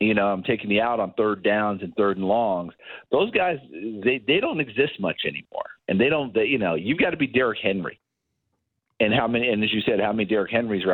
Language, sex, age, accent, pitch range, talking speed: English, male, 50-69, American, 100-125 Hz, 245 wpm